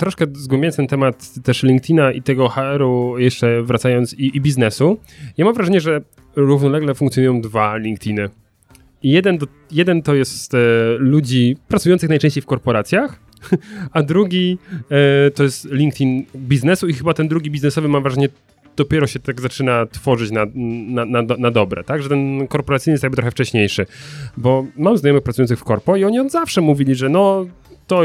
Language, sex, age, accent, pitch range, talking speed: Polish, male, 30-49, native, 125-150 Hz, 165 wpm